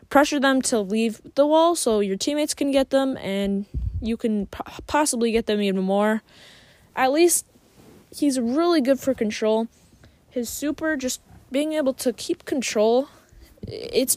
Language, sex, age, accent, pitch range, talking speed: English, female, 10-29, American, 205-265 Hz, 150 wpm